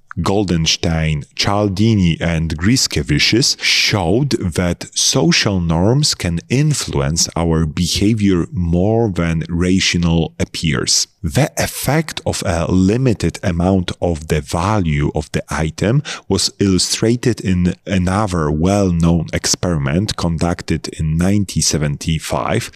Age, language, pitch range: 30-49, English, 85-105 Hz